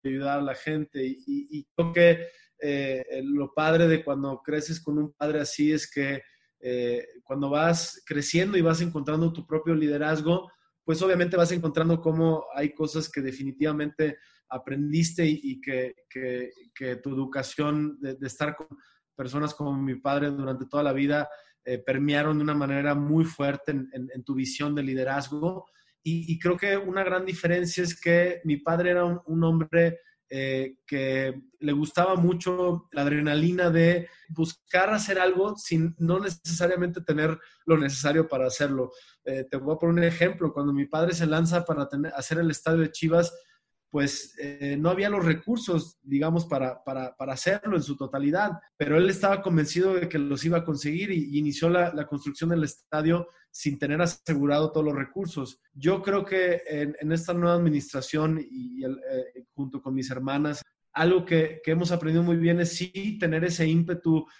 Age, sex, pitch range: 20-39, male, 140-170 Hz